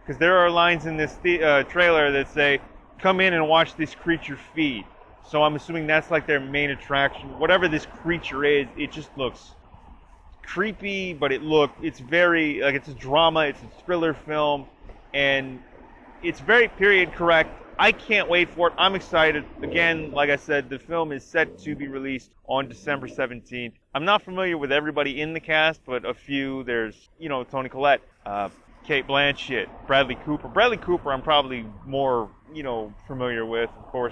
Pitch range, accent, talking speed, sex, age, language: 115-155 Hz, American, 180 wpm, male, 30-49, English